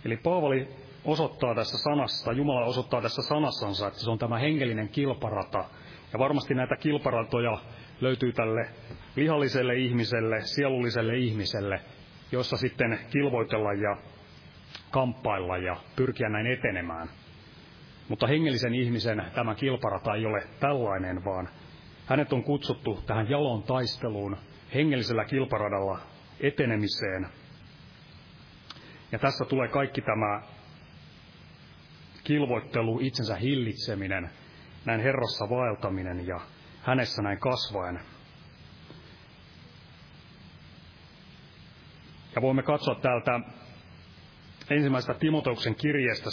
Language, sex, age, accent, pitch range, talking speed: Finnish, male, 30-49, native, 110-135 Hz, 95 wpm